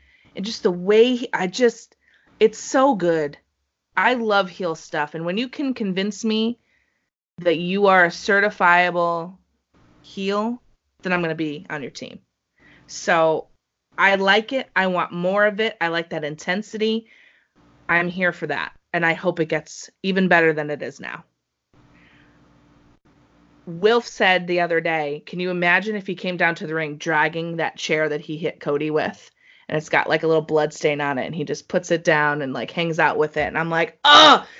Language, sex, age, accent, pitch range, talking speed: English, female, 20-39, American, 160-225 Hz, 190 wpm